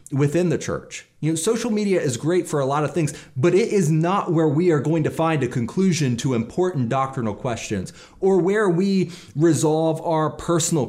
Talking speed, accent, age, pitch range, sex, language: 200 wpm, American, 30-49, 125-175 Hz, male, English